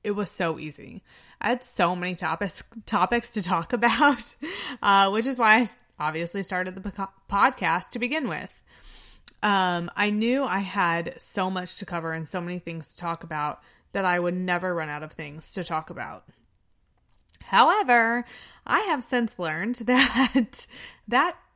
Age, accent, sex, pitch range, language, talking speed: 20-39, American, female, 175-230 Hz, English, 165 wpm